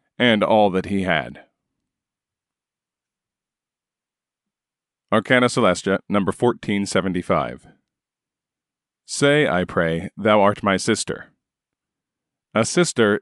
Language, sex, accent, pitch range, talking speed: English, male, American, 100-120 Hz, 80 wpm